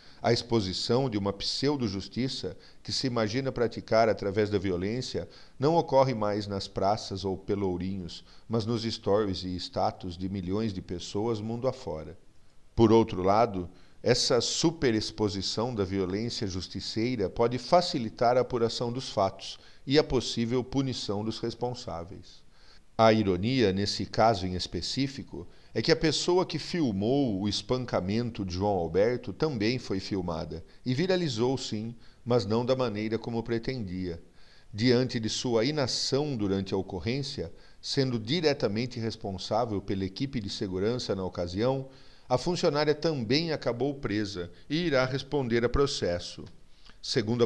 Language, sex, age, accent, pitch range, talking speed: Portuguese, male, 50-69, Brazilian, 95-125 Hz, 135 wpm